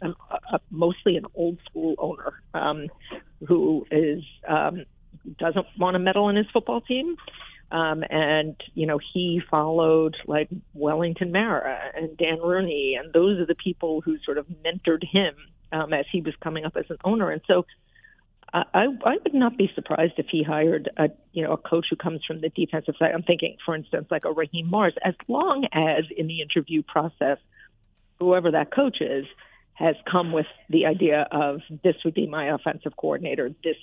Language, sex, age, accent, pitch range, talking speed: English, female, 50-69, American, 155-180 Hz, 185 wpm